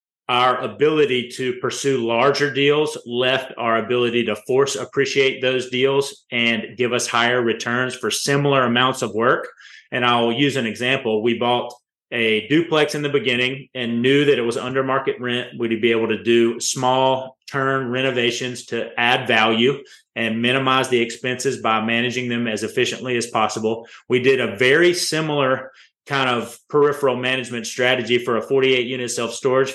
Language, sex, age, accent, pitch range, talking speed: English, male, 30-49, American, 120-140 Hz, 160 wpm